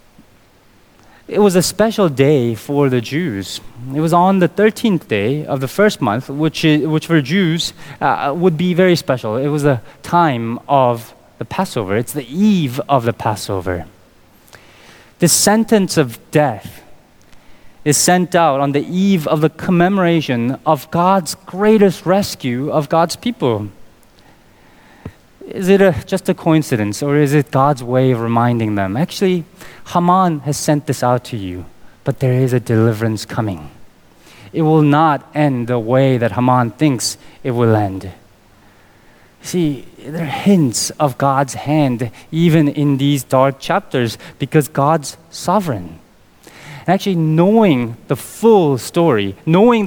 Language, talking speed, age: English, 145 wpm, 30-49